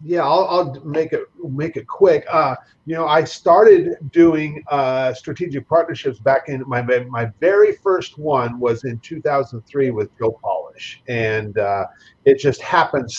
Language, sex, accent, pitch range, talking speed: English, male, American, 125-165 Hz, 160 wpm